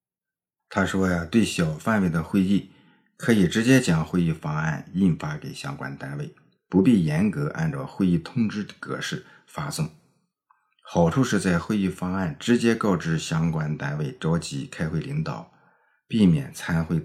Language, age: Chinese, 50-69